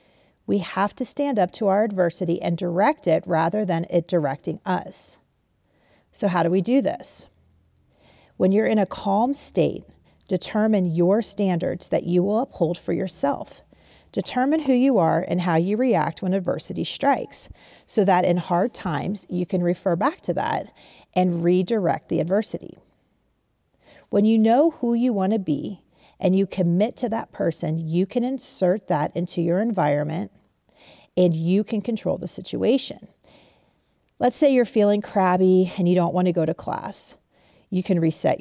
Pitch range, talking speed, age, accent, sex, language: 175-220 Hz, 165 wpm, 40-59, American, female, English